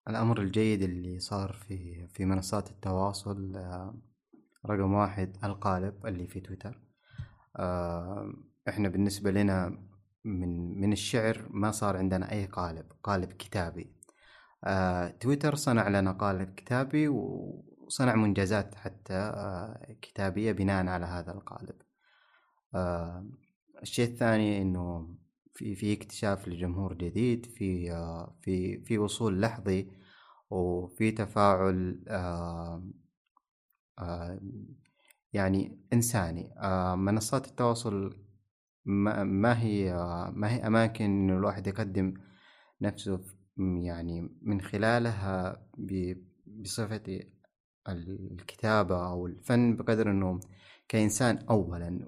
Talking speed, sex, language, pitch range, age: 90 wpm, male, Arabic, 95-105 Hz, 30-49